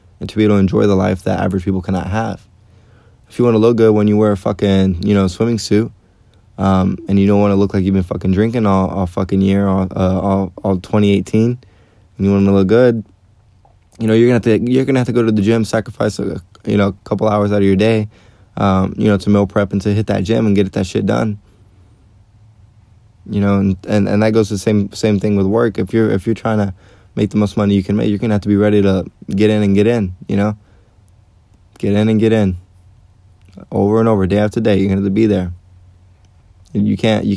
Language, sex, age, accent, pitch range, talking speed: English, male, 20-39, American, 95-105 Hz, 255 wpm